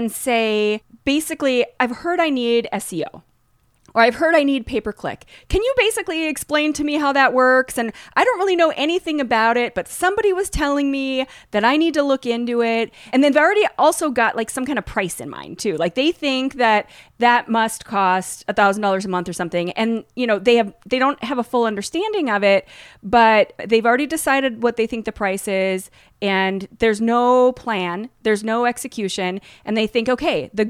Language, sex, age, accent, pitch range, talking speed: English, female, 30-49, American, 220-300 Hz, 200 wpm